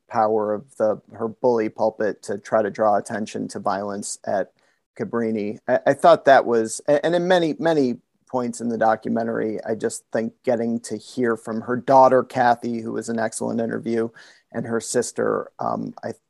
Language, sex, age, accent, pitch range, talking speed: English, male, 40-59, American, 120-135 Hz, 175 wpm